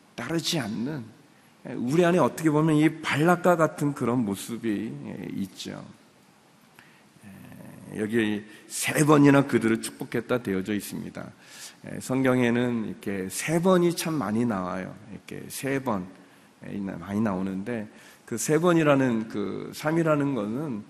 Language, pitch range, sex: Korean, 105-145 Hz, male